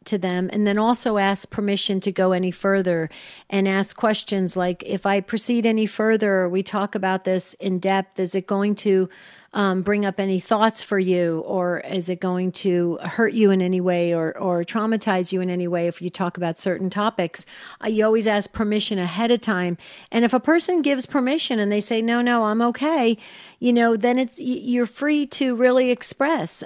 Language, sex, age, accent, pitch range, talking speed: English, female, 40-59, American, 185-220 Hz, 205 wpm